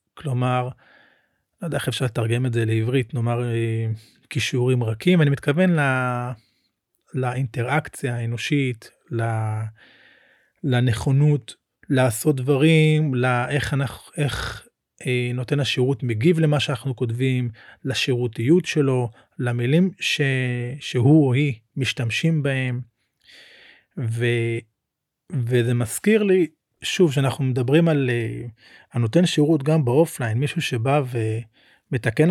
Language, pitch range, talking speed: Hebrew, 120-150 Hz, 100 wpm